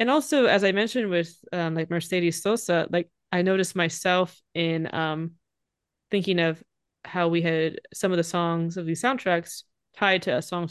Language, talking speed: English, 175 wpm